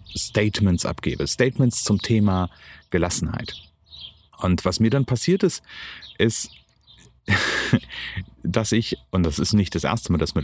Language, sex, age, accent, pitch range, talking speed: German, male, 40-59, German, 95-120 Hz, 140 wpm